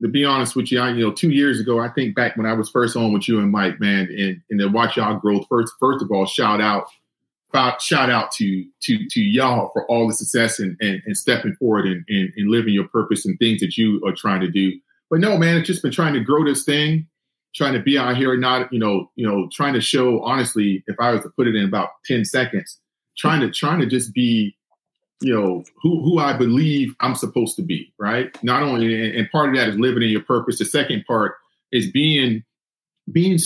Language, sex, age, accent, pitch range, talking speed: English, male, 40-59, American, 110-135 Hz, 245 wpm